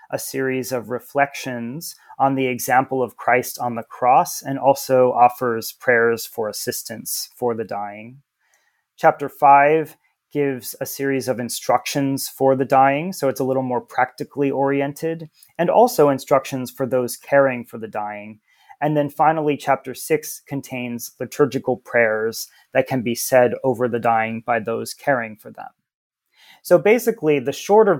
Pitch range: 120-140 Hz